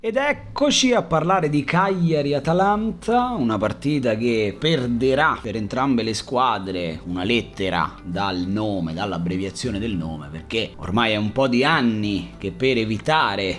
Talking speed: 135 wpm